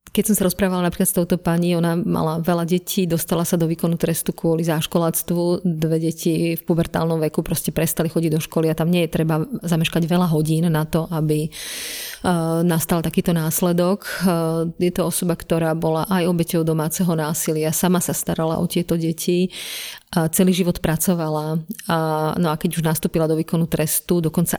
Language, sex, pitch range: Slovak, female, 160-175 Hz